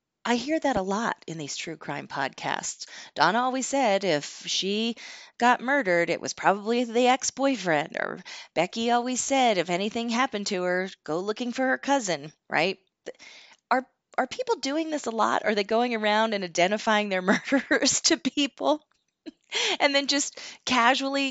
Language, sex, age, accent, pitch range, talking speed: English, female, 30-49, American, 195-270 Hz, 165 wpm